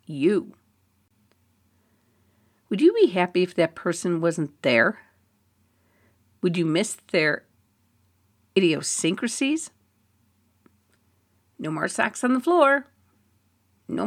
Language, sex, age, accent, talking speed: English, female, 50-69, American, 95 wpm